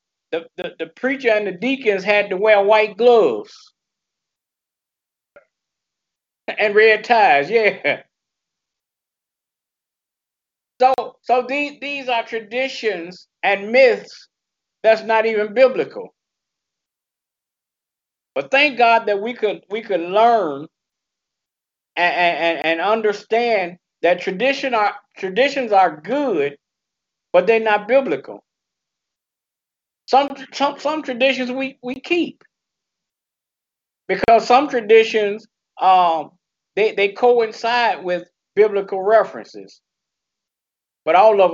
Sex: male